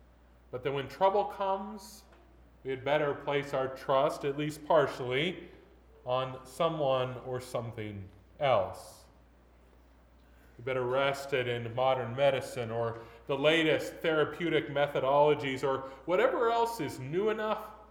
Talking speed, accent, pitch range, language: 120 wpm, American, 115-155 Hz, English